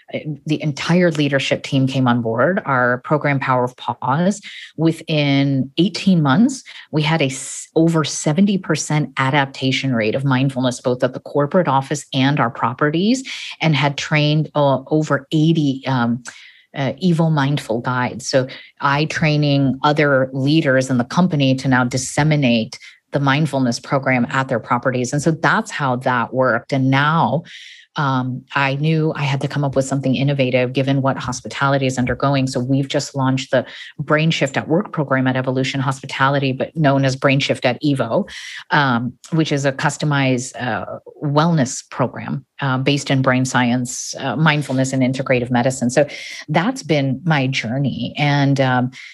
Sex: female